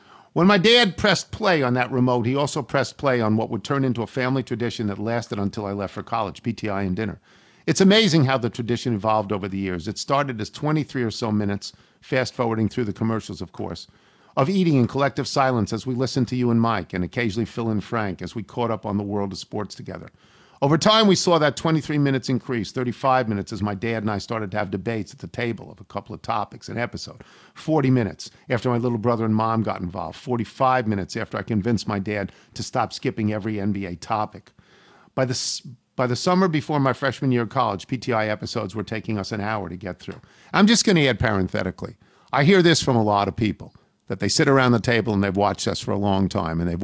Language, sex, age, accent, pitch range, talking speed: English, male, 50-69, American, 100-130 Hz, 235 wpm